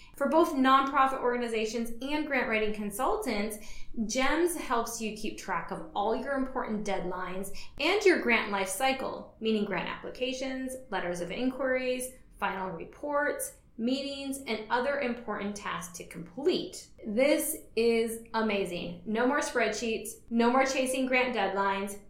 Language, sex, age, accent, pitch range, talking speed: English, female, 20-39, American, 200-270 Hz, 135 wpm